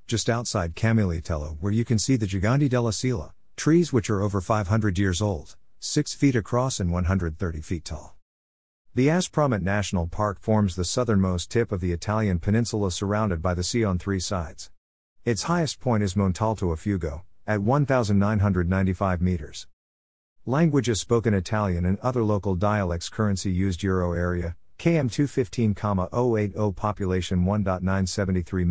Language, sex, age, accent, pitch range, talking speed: English, male, 50-69, American, 90-115 Hz, 145 wpm